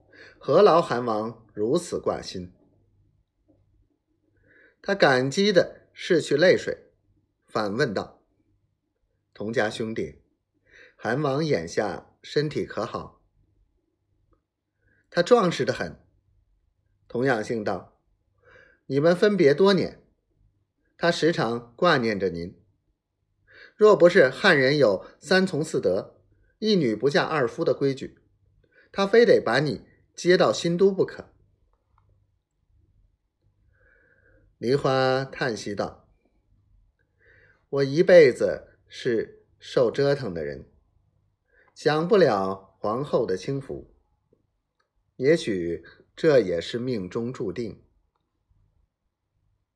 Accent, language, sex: native, Chinese, male